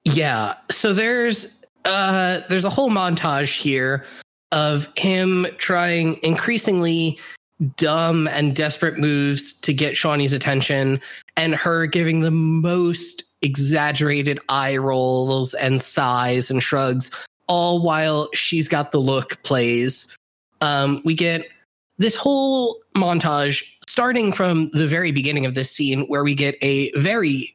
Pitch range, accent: 140-180 Hz, American